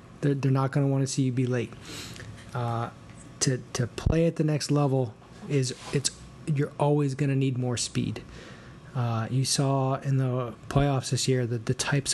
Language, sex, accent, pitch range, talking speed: English, male, American, 125-140 Hz, 190 wpm